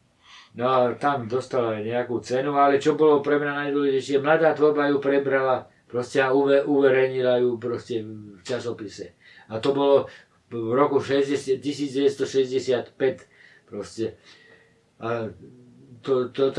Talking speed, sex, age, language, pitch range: 105 wpm, male, 50-69, Slovak, 125-145 Hz